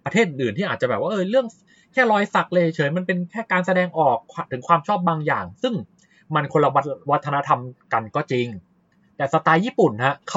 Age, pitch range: 20-39, 135-195 Hz